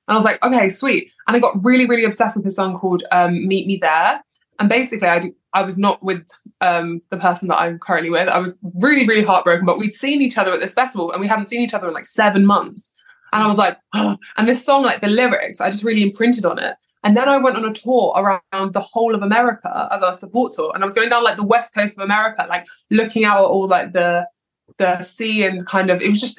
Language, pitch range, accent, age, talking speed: English, 185-225 Hz, British, 20-39, 265 wpm